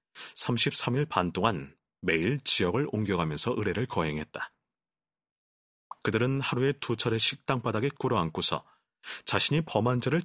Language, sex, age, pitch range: Korean, male, 30-49, 95-145 Hz